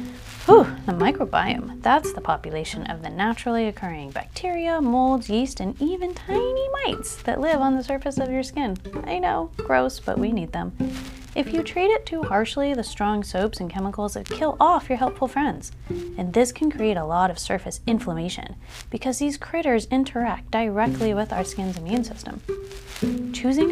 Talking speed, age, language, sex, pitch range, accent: 175 wpm, 30-49, English, female, 175-260 Hz, American